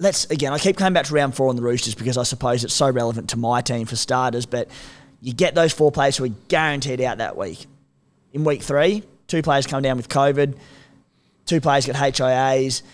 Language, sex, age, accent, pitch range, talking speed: English, male, 20-39, Australian, 130-170 Hz, 225 wpm